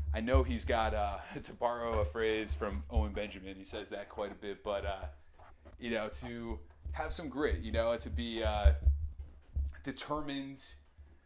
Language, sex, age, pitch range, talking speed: English, male, 30-49, 75-110 Hz, 170 wpm